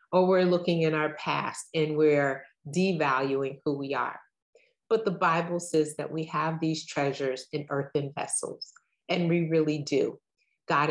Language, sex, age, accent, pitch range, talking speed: English, female, 30-49, American, 145-175 Hz, 160 wpm